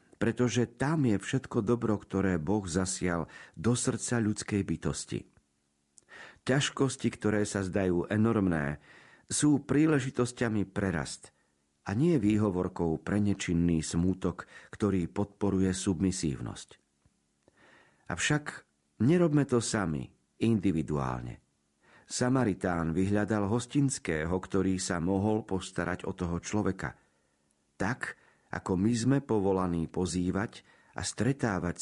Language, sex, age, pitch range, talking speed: Slovak, male, 50-69, 85-115 Hz, 100 wpm